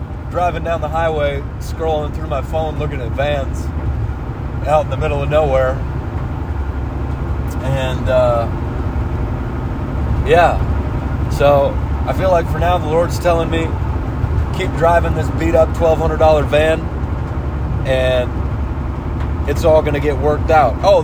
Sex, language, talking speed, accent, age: male, English, 130 wpm, American, 30-49